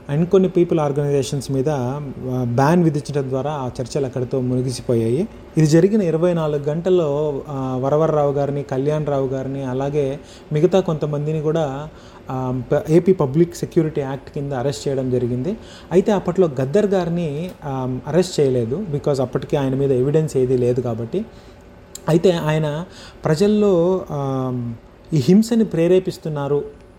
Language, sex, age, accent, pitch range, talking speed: Telugu, male, 30-49, native, 135-170 Hz, 120 wpm